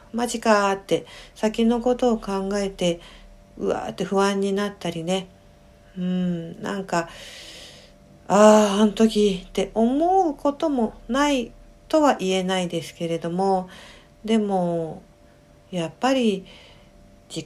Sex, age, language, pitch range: female, 50-69, Japanese, 175-235 Hz